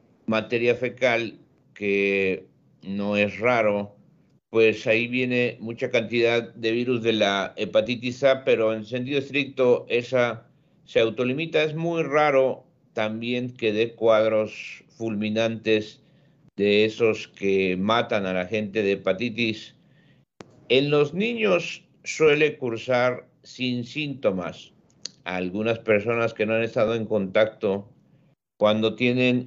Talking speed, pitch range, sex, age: 120 wpm, 110-125 Hz, male, 50-69